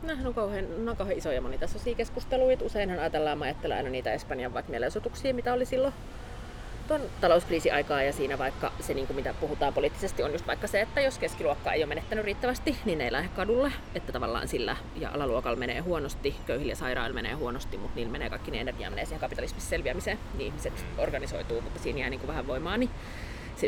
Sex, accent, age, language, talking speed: female, native, 30-49, Finnish, 195 wpm